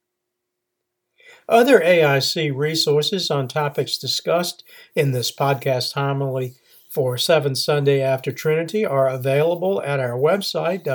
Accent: American